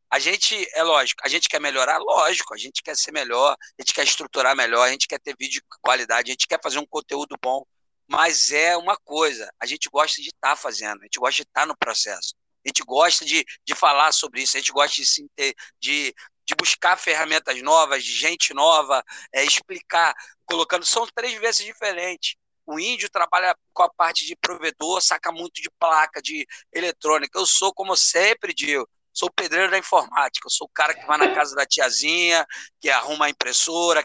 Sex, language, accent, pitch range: male, Portuguese, Brazilian, 175-250 Hz